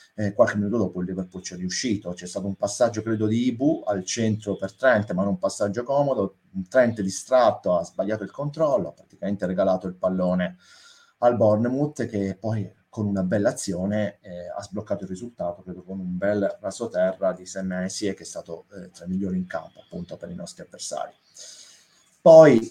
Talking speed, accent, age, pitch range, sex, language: 195 wpm, native, 30-49, 95-115 Hz, male, Italian